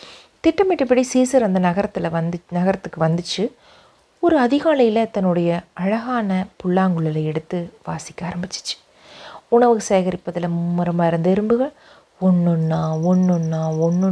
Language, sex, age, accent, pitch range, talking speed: Tamil, female, 30-49, native, 175-255 Hz, 105 wpm